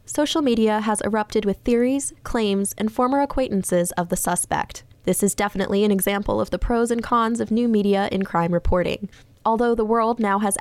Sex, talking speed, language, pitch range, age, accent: female, 190 wpm, English, 190-225 Hz, 10-29, American